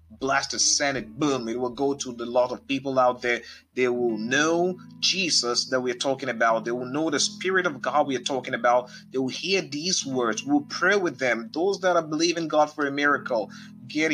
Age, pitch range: 30-49, 125-160 Hz